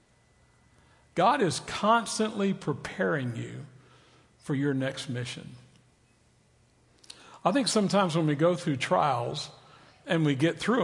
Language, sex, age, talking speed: English, male, 60-79, 115 wpm